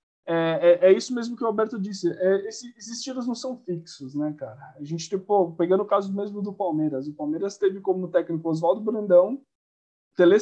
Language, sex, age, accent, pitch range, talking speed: Portuguese, male, 20-39, Brazilian, 170-215 Hz, 200 wpm